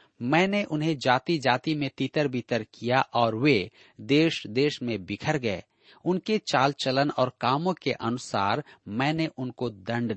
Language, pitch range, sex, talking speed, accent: Hindi, 120-160 Hz, male, 150 wpm, native